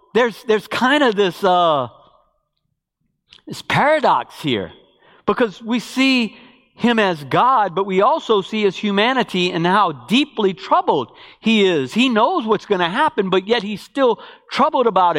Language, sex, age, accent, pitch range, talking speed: English, male, 50-69, American, 190-280 Hz, 155 wpm